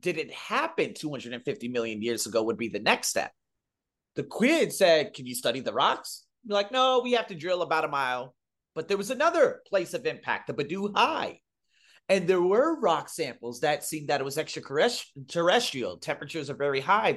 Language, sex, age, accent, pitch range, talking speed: English, male, 30-49, American, 125-180 Hz, 190 wpm